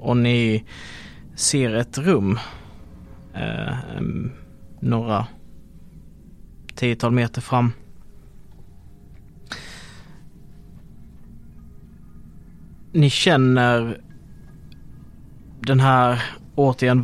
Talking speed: 55 wpm